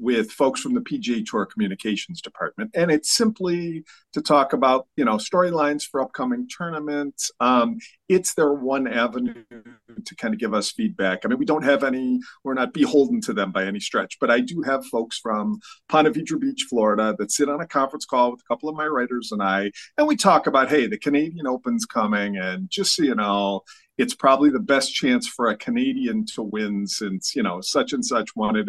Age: 40-59